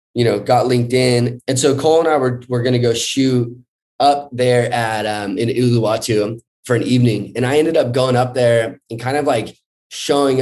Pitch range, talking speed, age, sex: 110-130 Hz, 200 wpm, 20-39, male